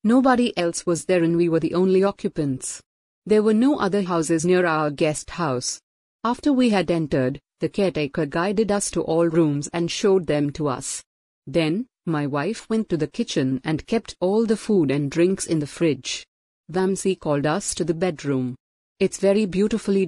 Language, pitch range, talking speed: English, 155-200 Hz, 180 wpm